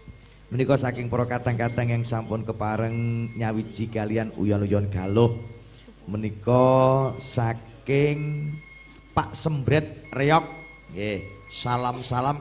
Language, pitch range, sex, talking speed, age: Indonesian, 95-125 Hz, male, 95 wpm, 40-59